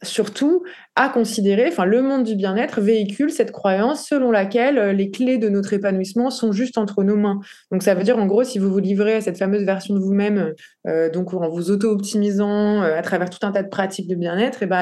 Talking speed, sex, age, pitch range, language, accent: 225 wpm, female, 20-39, 180-215 Hz, French, French